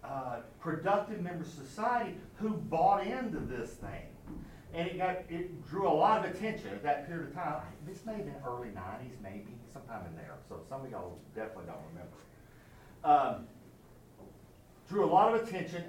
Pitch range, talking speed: 125-175 Hz, 180 wpm